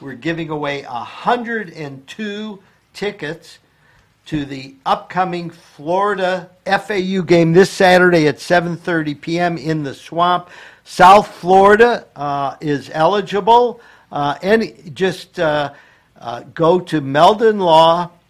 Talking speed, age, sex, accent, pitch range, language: 110 wpm, 50-69, male, American, 145-185 Hz, English